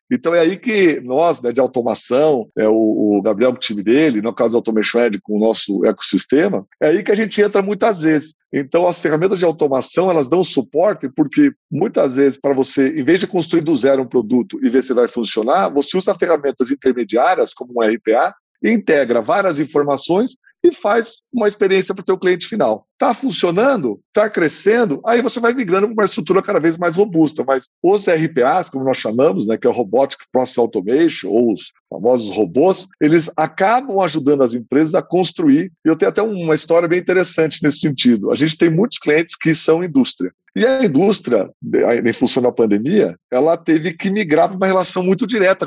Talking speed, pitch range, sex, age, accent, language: 195 wpm, 130-195 Hz, male, 50-69, Brazilian, Portuguese